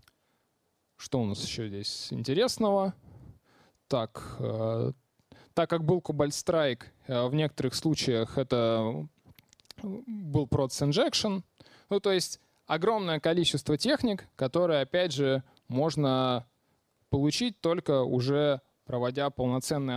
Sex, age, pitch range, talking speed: male, 20-39, 120-155 Hz, 110 wpm